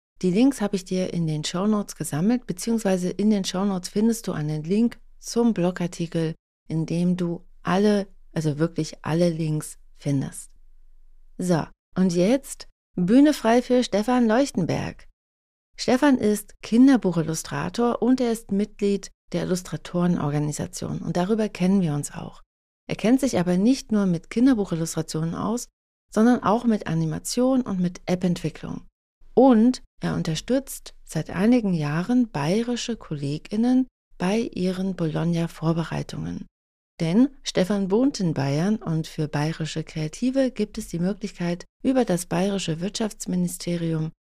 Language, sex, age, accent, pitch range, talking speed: German, female, 30-49, German, 165-225 Hz, 130 wpm